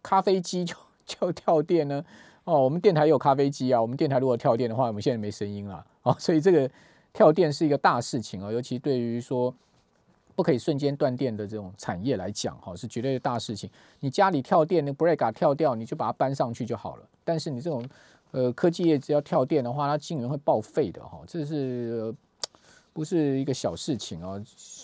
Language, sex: Chinese, male